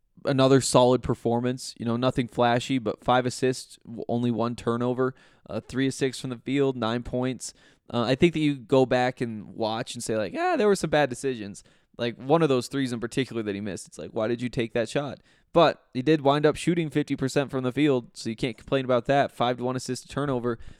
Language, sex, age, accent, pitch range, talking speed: English, male, 20-39, American, 115-135 Hz, 230 wpm